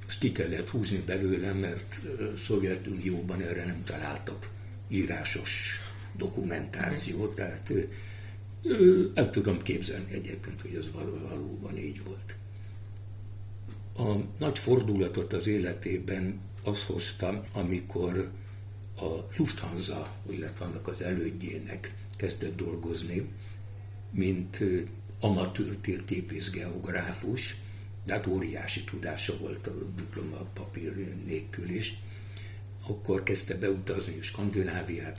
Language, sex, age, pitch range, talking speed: Hungarian, male, 60-79, 95-100 Hz, 90 wpm